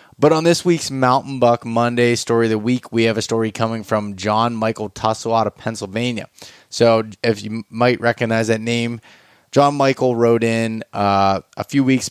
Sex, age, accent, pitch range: male, 20-39, American, 105-125 Hz